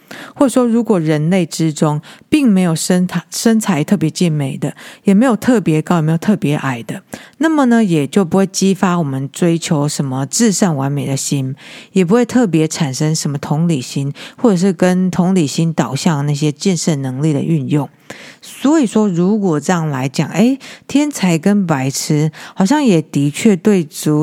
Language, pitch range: Chinese, 155-210 Hz